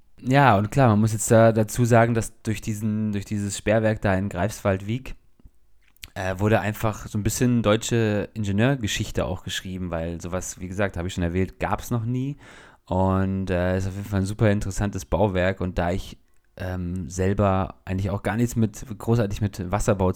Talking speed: 190 wpm